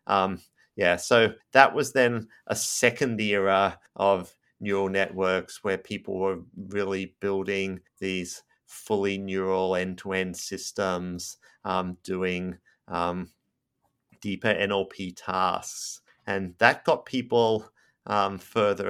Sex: male